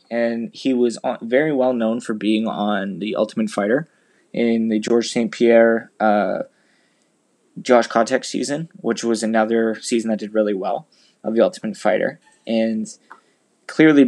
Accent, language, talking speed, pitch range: American, English, 145 wpm, 110-125 Hz